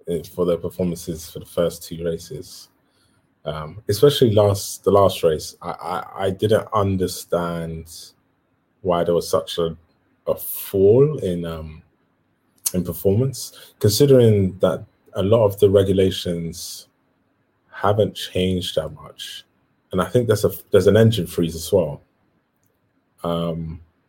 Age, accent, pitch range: 20-39, British, 85-100 Hz